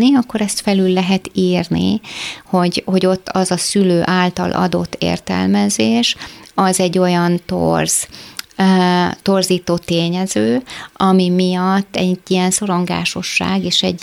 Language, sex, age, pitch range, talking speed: Hungarian, female, 30-49, 140-185 Hz, 115 wpm